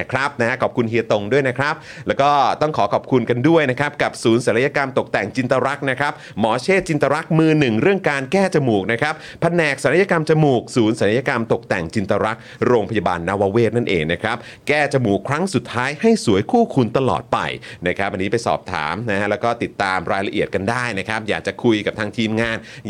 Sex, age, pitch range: male, 30-49, 115-160 Hz